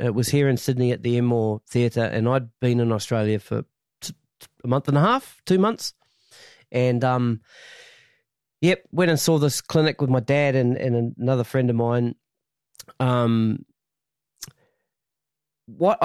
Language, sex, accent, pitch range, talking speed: English, male, Australian, 120-155 Hz, 155 wpm